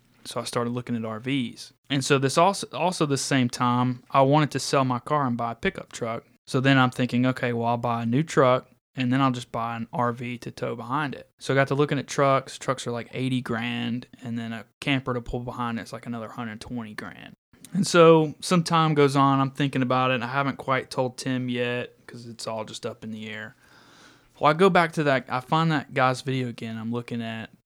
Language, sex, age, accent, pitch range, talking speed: English, male, 20-39, American, 120-135 Hz, 245 wpm